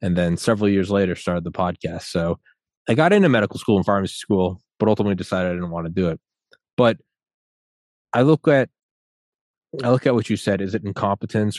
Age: 20-39